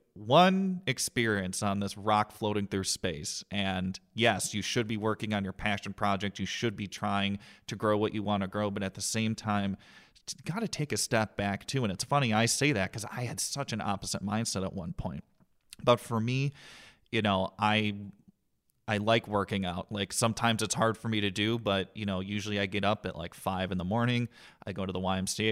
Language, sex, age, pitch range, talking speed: English, male, 30-49, 95-115 Hz, 220 wpm